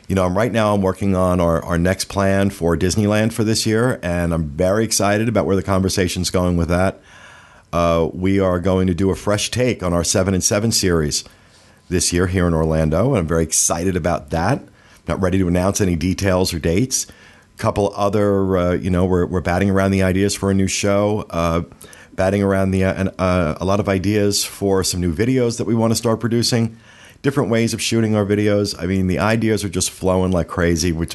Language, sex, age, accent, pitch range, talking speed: English, male, 50-69, American, 85-100 Hz, 220 wpm